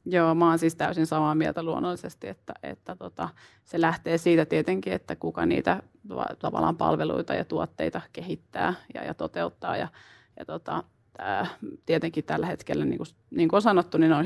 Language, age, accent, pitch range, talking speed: Finnish, 30-49, native, 165-185 Hz, 160 wpm